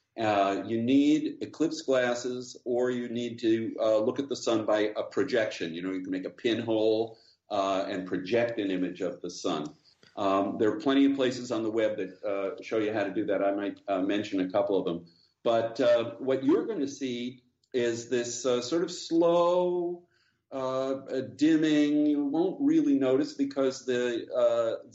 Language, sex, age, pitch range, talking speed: English, male, 50-69, 115-175 Hz, 190 wpm